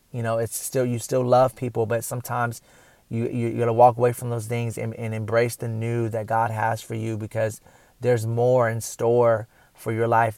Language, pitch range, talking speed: English, 115-125 Hz, 220 wpm